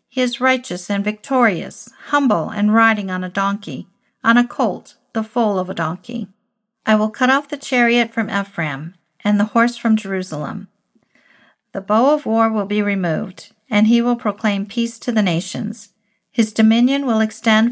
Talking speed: 175 wpm